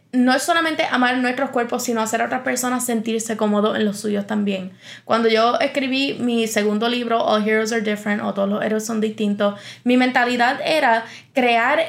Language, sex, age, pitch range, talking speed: Spanish, female, 20-39, 215-255 Hz, 185 wpm